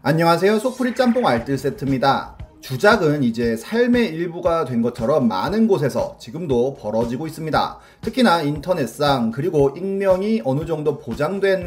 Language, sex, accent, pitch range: Korean, male, native, 125-205 Hz